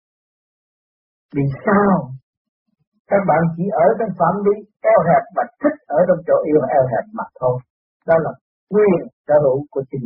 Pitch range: 150-205 Hz